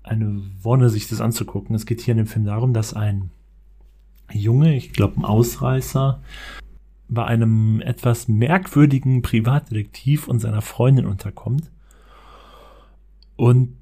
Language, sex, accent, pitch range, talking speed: German, male, German, 110-135 Hz, 125 wpm